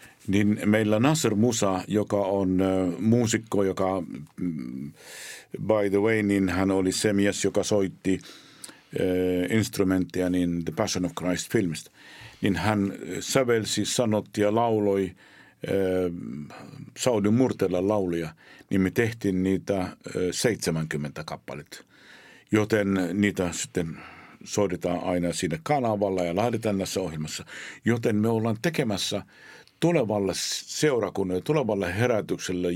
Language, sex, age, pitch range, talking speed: Finnish, male, 50-69, 95-110 Hz, 115 wpm